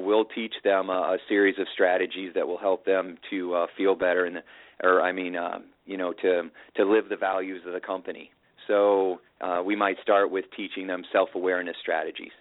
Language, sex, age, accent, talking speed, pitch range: English, male, 40-59, American, 185 wpm, 90-100 Hz